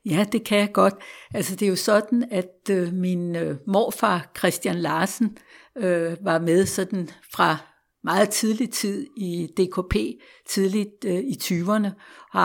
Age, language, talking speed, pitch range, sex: 60-79, Danish, 130 wpm, 180-215 Hz, female